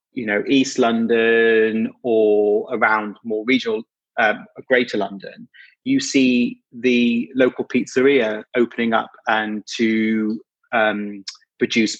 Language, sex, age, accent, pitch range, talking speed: English, male, 30-49, British, 105-130 Hz, 110 wpm